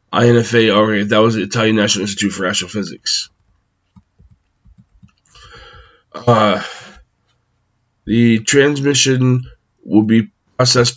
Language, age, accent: English, 20-39, American